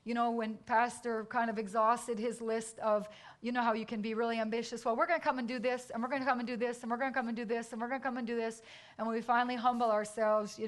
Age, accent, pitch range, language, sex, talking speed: 40-59, American, 215-250 Hz, English, female, 320 wpm